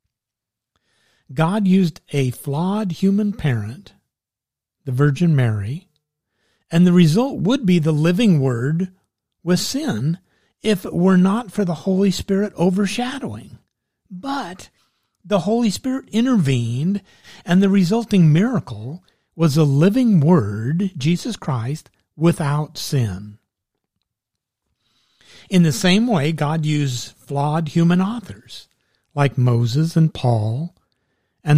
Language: English